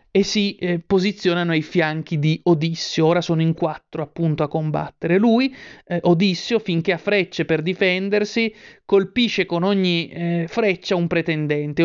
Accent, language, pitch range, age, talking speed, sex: native, Italian, 165-195 Hz, 30-49, 150 wpm, male